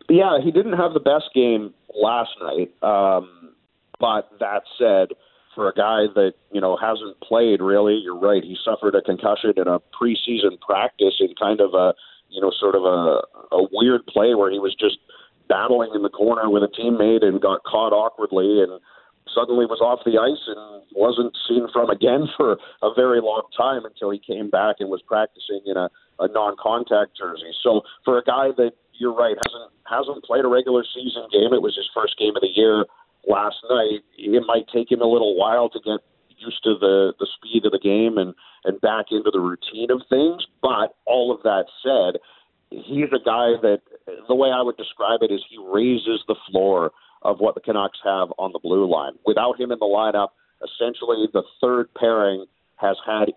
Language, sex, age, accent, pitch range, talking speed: English, male, 50-69, American, 100-125 Hz, 200 wpm